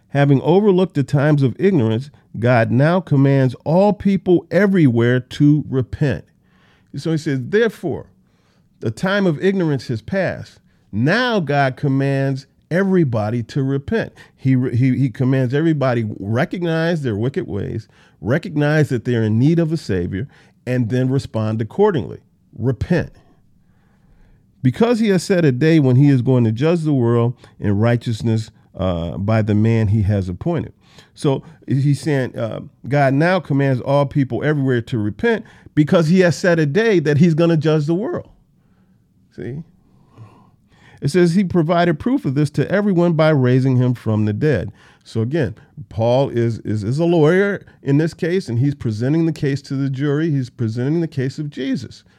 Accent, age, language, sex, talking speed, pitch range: American, 40-59, English, male, 160 wpm, 120-165 Hz